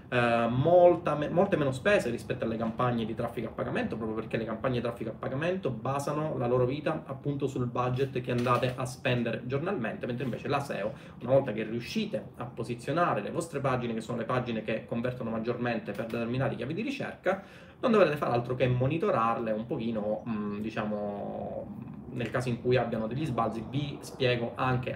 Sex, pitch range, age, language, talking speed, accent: male, 115-140 Hz, 20-39, Italian, 180 wpm, native